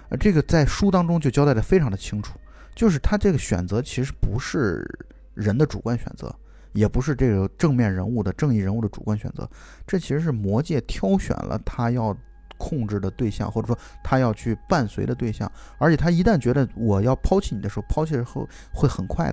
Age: 20-39